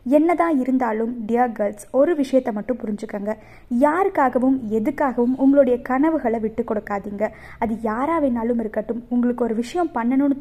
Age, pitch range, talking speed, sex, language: 20-39, 225-285 Hz, 125 wpm, female, Tamil